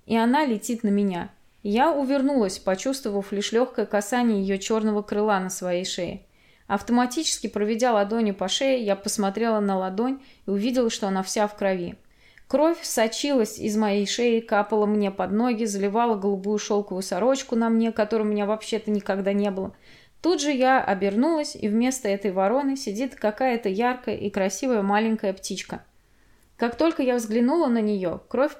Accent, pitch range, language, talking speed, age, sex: native, 205-250 Hz, Russian, 160 wpm, 20-39, female